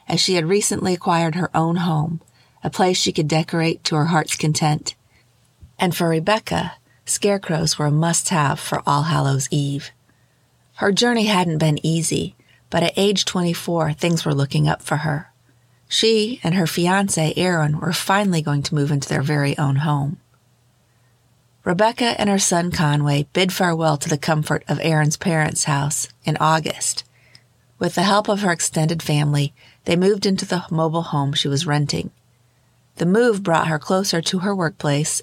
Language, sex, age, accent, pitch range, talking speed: English, female, 40-59, American, 145-180 Hz, 165 wpm